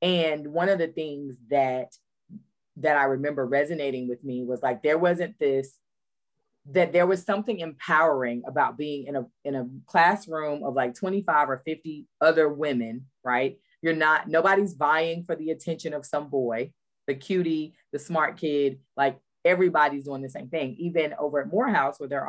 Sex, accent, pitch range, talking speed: female, American, 135-165 Hz, 170 wpm